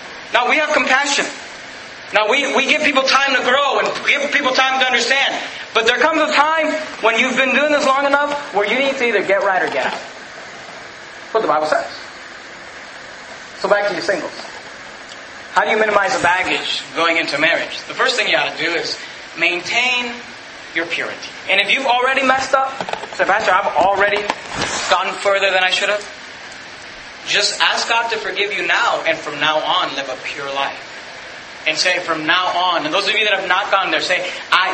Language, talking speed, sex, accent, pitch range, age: English, 205 wpm, male, American, 195-270 Hz, 30-49